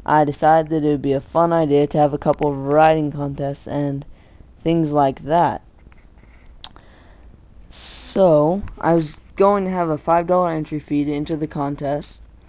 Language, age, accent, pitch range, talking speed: English, 10-29, American, 140-160 Hz, 165 wpm